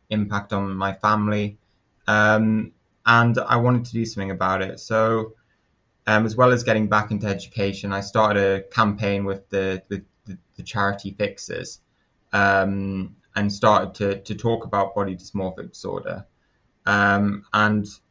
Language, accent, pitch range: English, British, 100-105 Hz